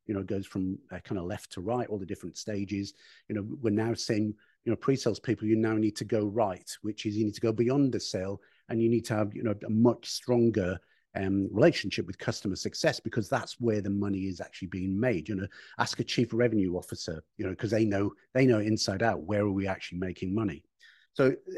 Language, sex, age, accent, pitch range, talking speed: English, male, 40-59, British, 100-120 Hz, 240 wpm